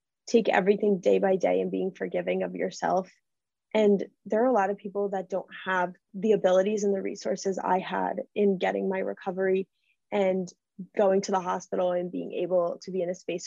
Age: 20-39